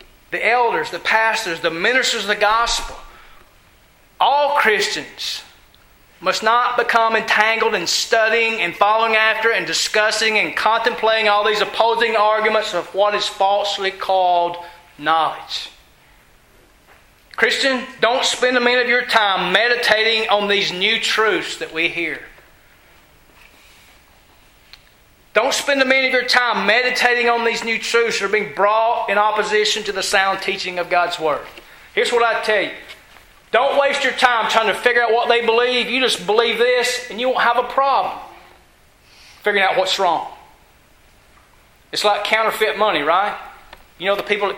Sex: male